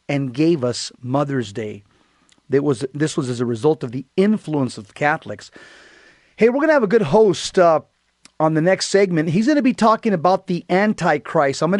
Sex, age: male, 40-59